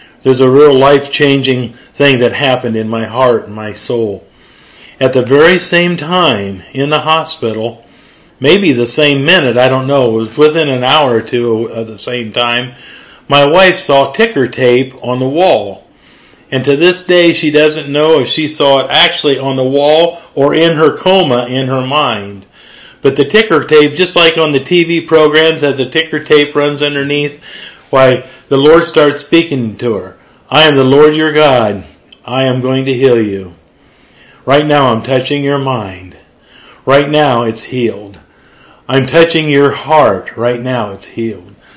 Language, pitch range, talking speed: English, 125-155 Hz, 175 wpm